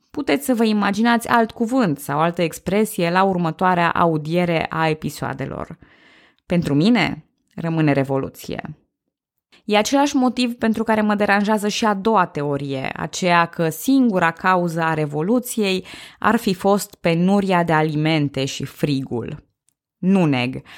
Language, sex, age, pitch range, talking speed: Romanian, female, 20-39, 160-205 Hz, 125 wpm